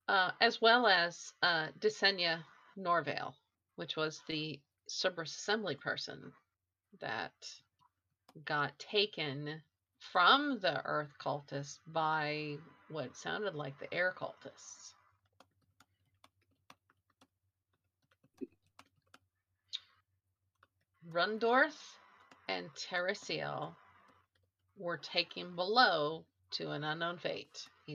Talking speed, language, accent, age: 80 wpm, English, American, 40-59